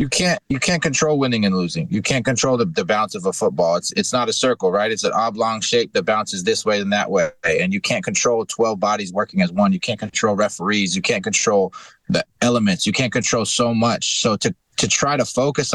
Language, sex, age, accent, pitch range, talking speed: English, male, 30-49, American, 105-135 Hz, 240 wpm